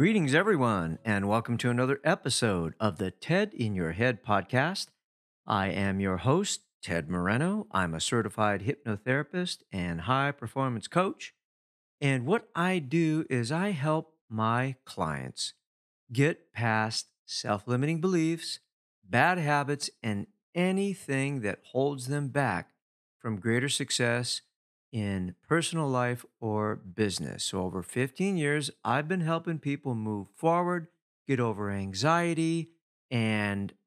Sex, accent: male, American